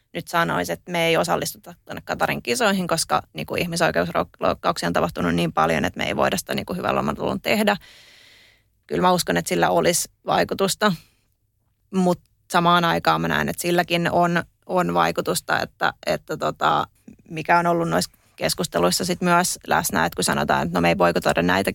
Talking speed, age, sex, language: 175 wpm, 20-39, female, Finnish